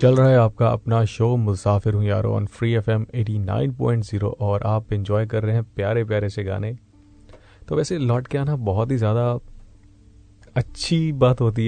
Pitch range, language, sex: 100-115 Hz, Hindi, male